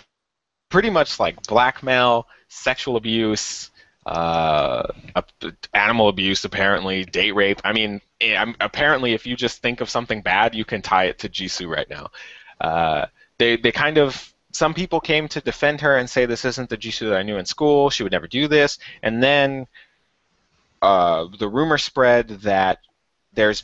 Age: 20-39